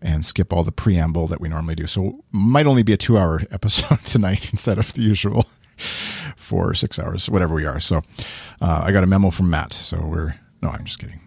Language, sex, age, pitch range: English, male, 40-59, 90-115 Hz